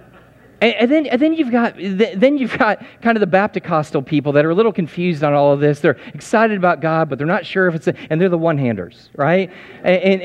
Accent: American